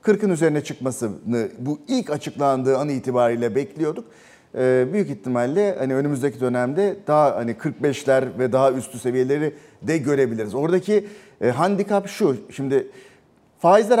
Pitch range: 130-180 Hz